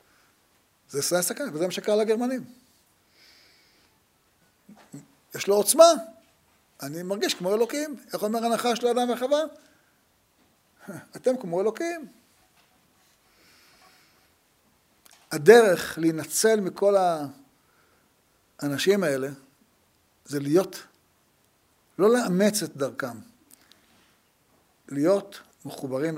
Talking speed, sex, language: 85 wpm, male, Hebrew